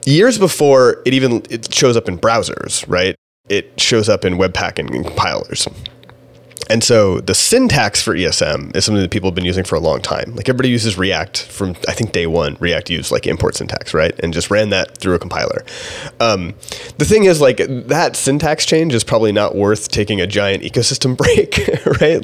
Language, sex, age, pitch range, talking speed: English, male, 30-49, 95-135 Hz, 200 wpm